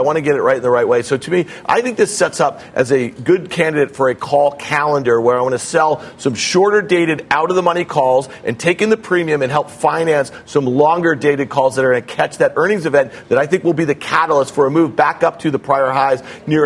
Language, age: English, 50-69